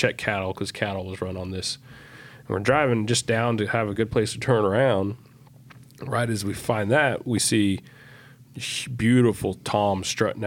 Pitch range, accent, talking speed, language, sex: 100-125 Hz, American, 180 wpm, English, male